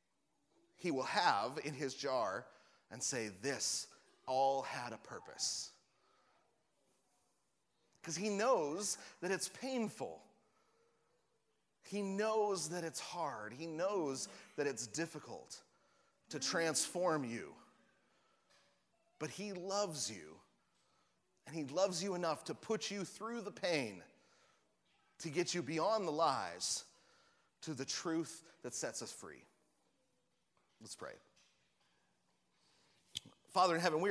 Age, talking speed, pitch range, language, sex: 30-49, 115 wpm, 140-195 Hz, English, male